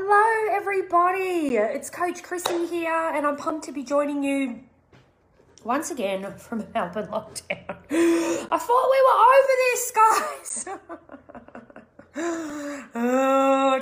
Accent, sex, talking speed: Australian, female, 115 wpm